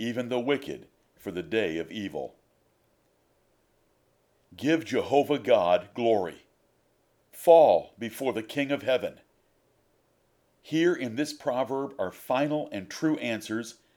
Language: English